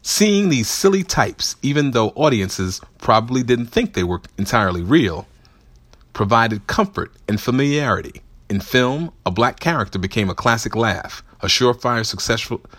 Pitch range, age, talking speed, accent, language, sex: 95-130 Hz, 40-59, 140 wpm, American, English, male